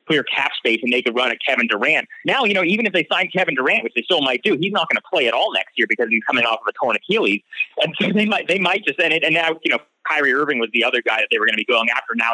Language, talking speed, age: English, 330 wpm, 30-49